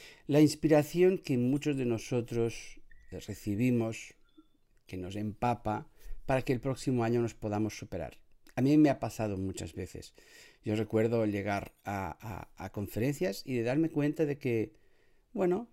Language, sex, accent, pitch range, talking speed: Spanish, male, Spanish, 105-135 Hz, 150 wpm